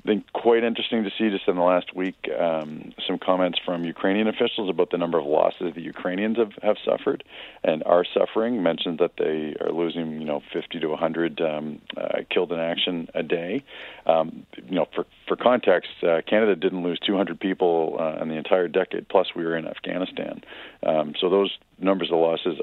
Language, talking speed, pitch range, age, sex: English, 200 wpm, 80-95 Hz, 40-59, male